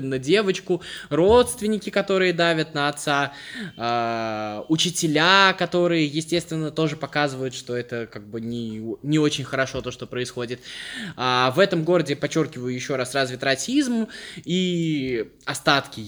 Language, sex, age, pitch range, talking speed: Russian, male, 20-39, 125-180 Hz, 125 wpm